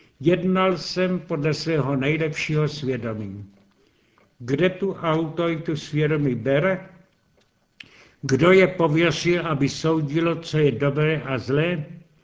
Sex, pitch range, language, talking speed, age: male, 140-170 Hz, Czech, 110 wpm, 70-89